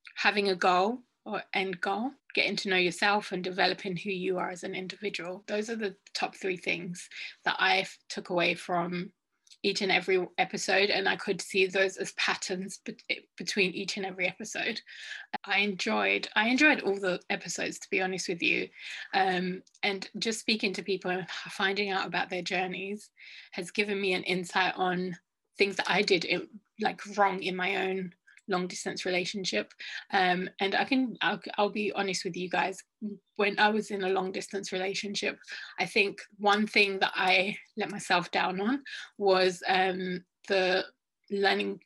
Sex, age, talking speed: female, 20-39, 170 wpm